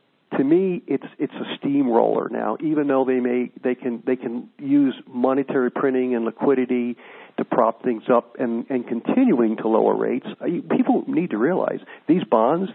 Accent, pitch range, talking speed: American, 120-190 Hz, 170 wpm